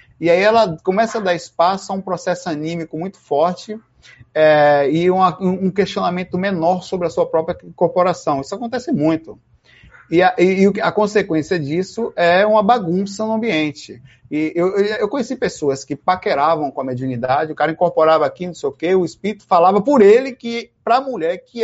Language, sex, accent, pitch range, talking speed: Portuguese, male, Brazilian, 165-220 Hz, 180 wpm